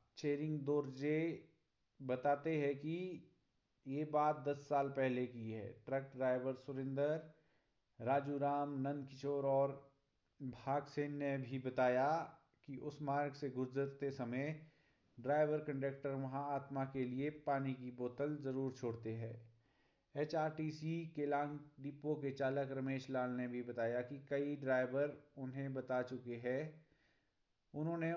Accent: native